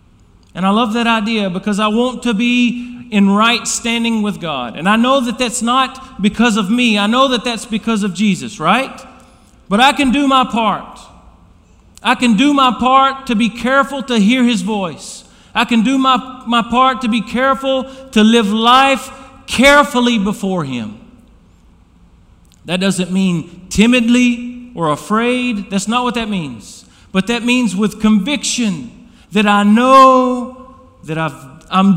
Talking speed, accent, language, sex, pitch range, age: 165 wpm, American, English, male, 185-240 Hz, 40-59